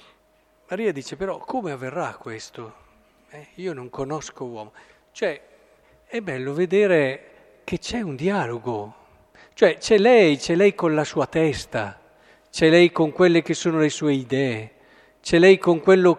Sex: male